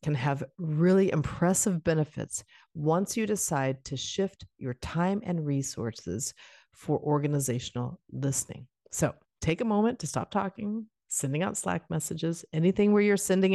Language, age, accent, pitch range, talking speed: English, 50-69, American, 140-185 Hz, 140 wpm